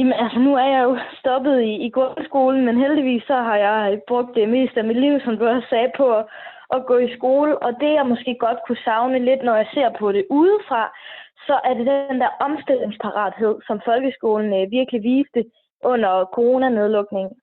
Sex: female